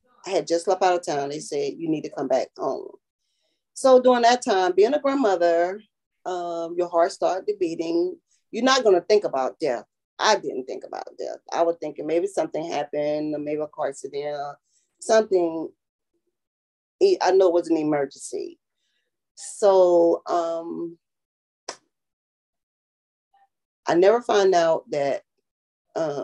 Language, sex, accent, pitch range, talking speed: English, female, American, 150-245 Hz, 145 wpm